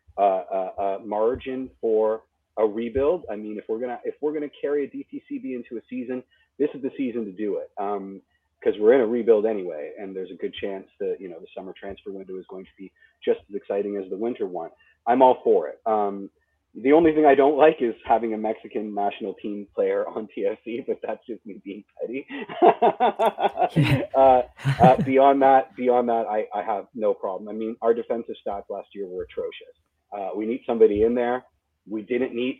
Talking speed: 210 wpm